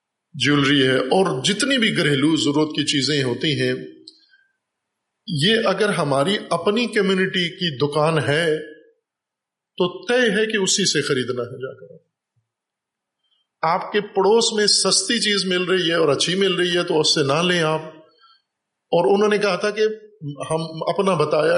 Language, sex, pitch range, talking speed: Urdu, male, 150-200 Hz, 160 wpm